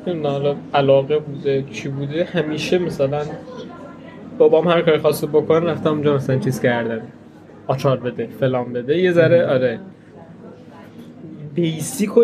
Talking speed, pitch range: 125 wpm, 135-180 Hz